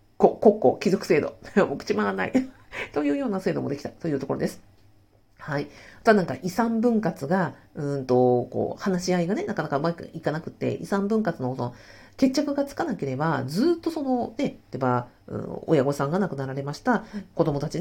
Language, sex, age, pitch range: Japanese, female, 50-69, 130-205 Hz